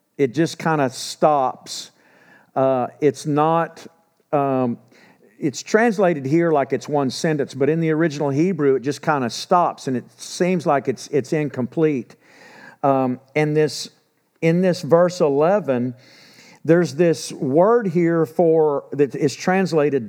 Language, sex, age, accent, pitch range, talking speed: English, male, 50-69, American, 140-180 Hz, 145 wpm